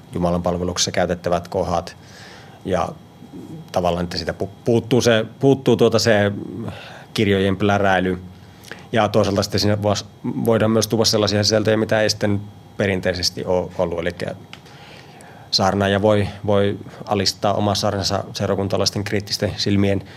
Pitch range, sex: 90-105 Hz, male